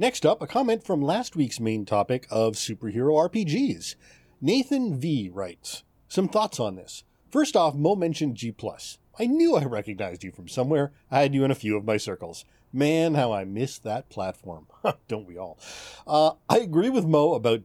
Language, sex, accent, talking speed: English, male, American, 185 wpm